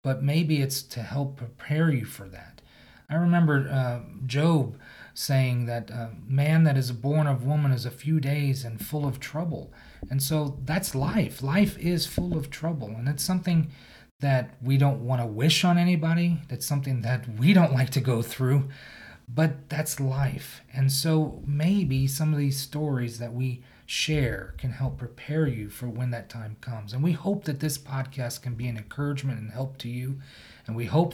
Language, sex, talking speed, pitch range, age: English, male, 190 wpm, 125-155 Hz, 40-59